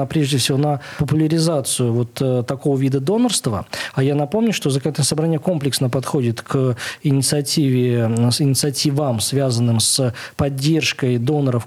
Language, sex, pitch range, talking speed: Russian, male, 130-155 Hz, 130 wpm